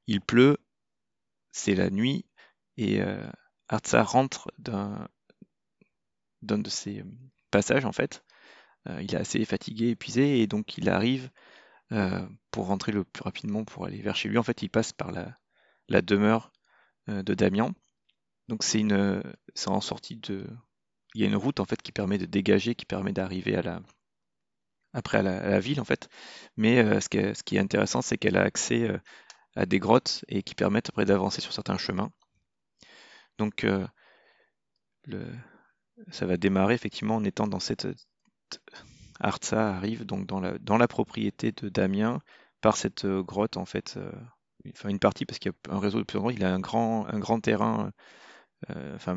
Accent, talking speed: French, 185 wpm